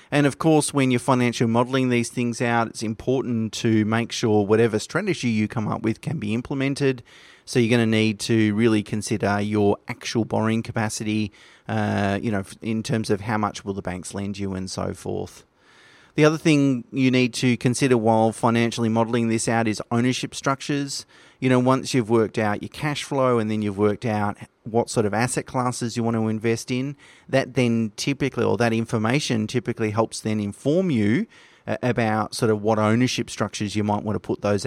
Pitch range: 105-125 Hz